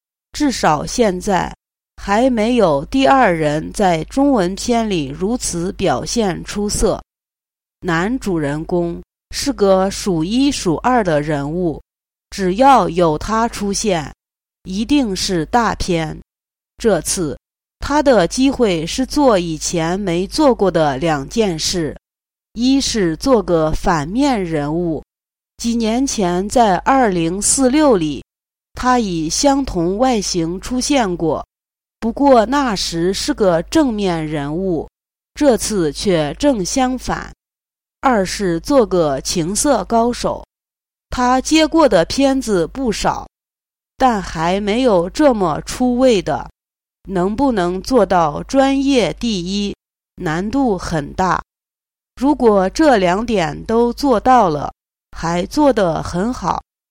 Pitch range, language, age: 175-255 Hz, English, 30-49